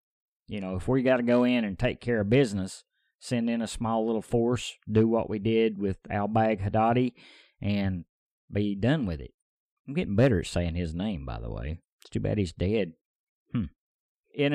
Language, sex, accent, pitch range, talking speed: English, male, American, 100-125 Hz, 195 wpm